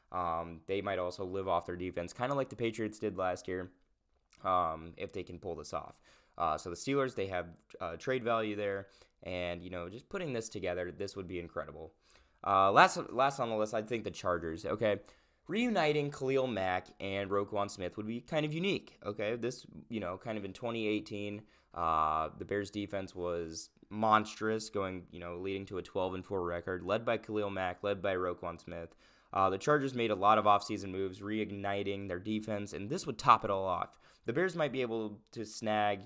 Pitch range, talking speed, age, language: 90-115 Hz, 205 wpm, 20-39, English